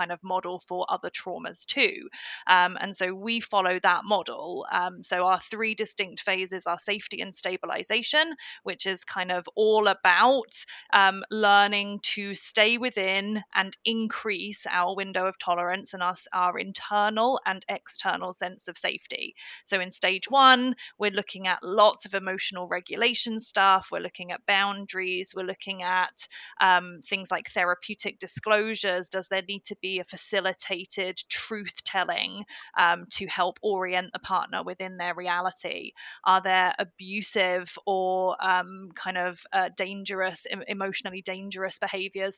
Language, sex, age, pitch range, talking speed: English, female, 20-39, 185-215 Hz, 145 wpm